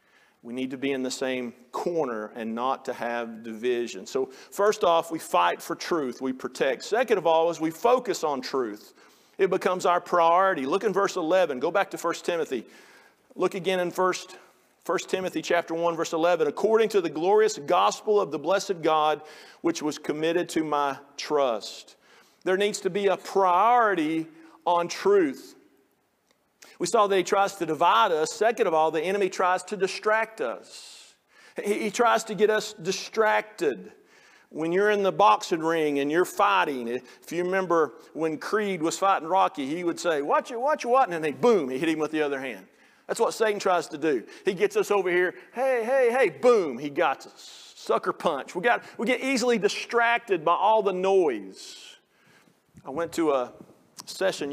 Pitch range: 160-225 Hz